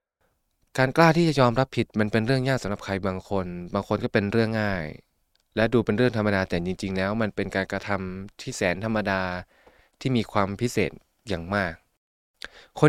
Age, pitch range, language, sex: 20-39, 95-115 Hz, Thai, male